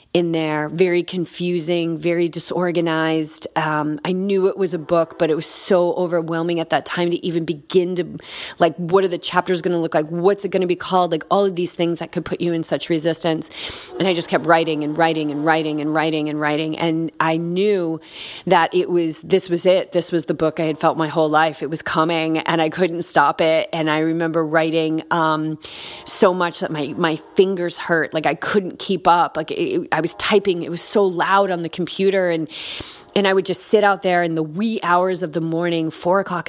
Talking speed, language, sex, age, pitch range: 230 wpm, English, female, 30-49, 160-180 Hz